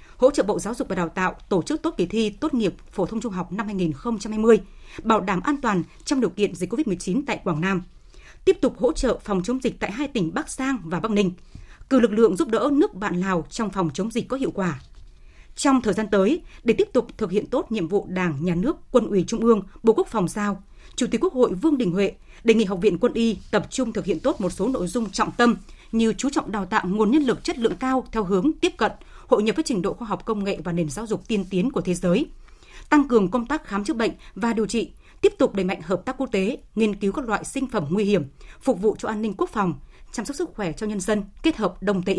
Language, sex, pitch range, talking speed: Vietnamese, female, 190-255 Hz, 265 wpm